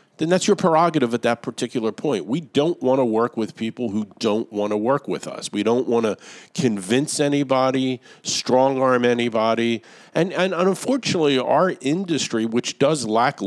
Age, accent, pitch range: 50-69, American, 110-140 Hz